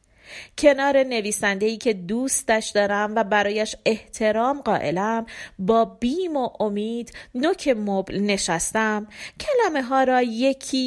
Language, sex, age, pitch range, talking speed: Persian, female, 30-49, 205-265 Hz, 110 wpm